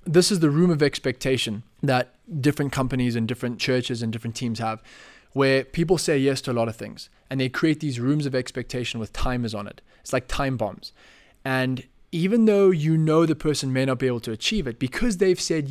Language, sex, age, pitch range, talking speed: English, male, 20-39, 120-155 Hz, 220 wpm